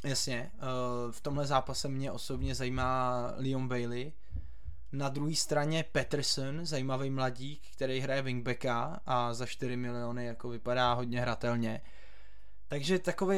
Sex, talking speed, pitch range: male, 125 wpm, 125-155 Hz